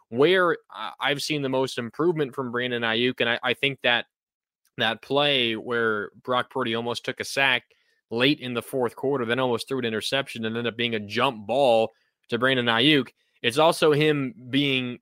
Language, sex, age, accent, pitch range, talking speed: English, male, 20-39, American, 115-140 Hz, 190 wpm